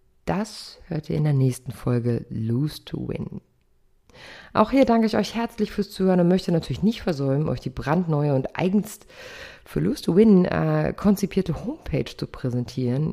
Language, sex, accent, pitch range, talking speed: German, female, German, 150-210 Hz, 170 wpm